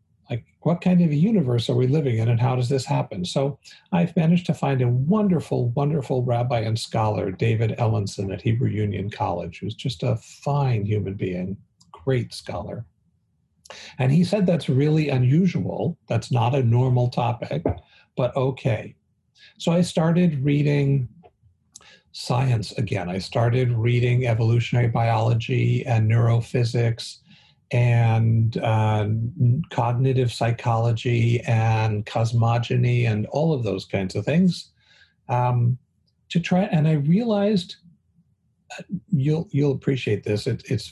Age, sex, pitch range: 50-69, male, 115-150 Hz